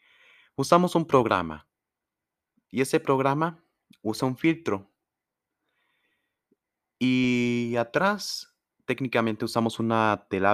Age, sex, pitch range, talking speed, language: 30-49, male, 100-135 Hz, 85 wpm, Spanish